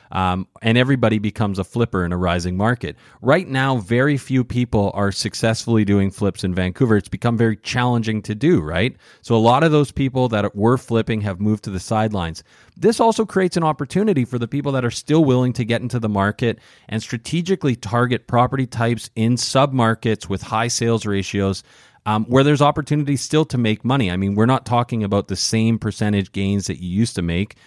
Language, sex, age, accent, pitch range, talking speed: English, male, 30-49, American, 100-130 Hz, 200 wpm